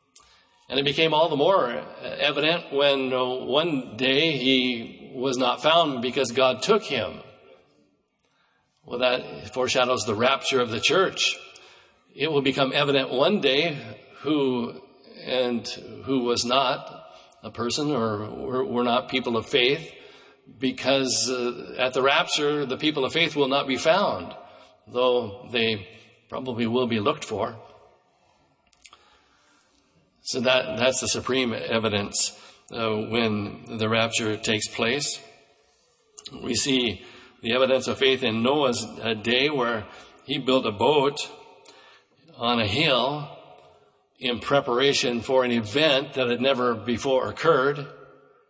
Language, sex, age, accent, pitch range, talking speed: English, male, 60-79, American, 115-135 Hz, 125 wpm